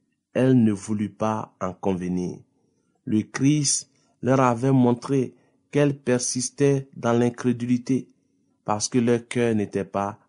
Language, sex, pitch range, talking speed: French, male, 110-130 Hz, 120 wpm